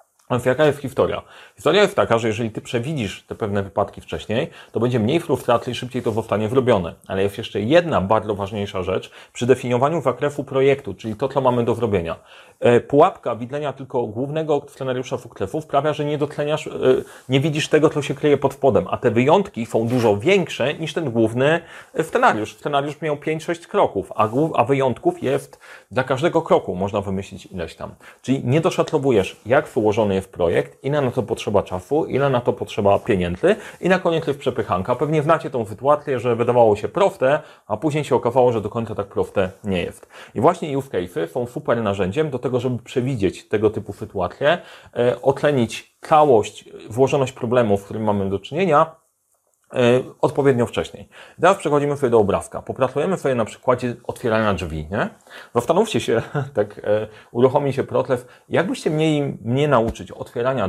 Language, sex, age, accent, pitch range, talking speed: Polish, male, 30-49, native, 105-145 Hz, 175 wpm